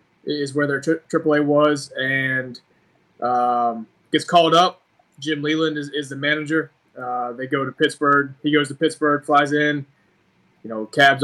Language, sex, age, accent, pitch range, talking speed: English, male, 20-39, American, 135-155 Hz, 165 wpm